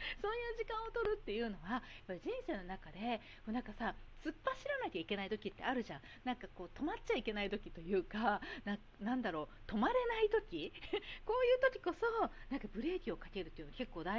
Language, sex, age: Japanese, female, 40-59